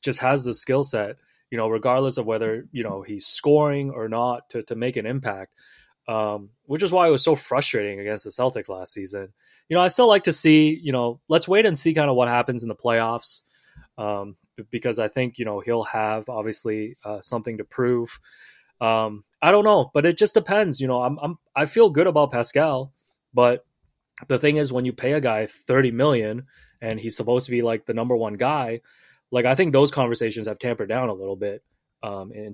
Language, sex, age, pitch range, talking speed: English, male, 20-39, 110-135 Hz, 220 wpm